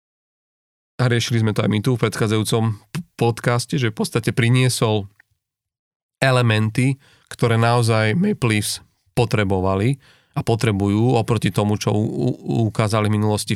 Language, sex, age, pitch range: Slovak, male, 30-49, 105-125 Hz